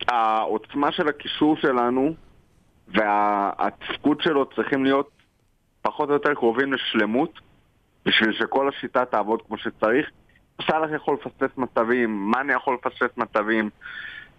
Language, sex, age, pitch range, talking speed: Hebrew, male, 30-49, 105-140 Hz, 115 wpm